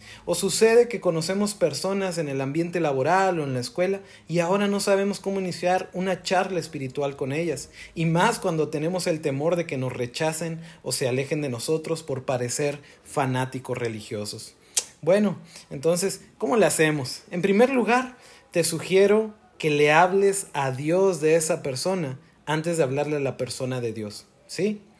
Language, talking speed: Spanish, 170 wpm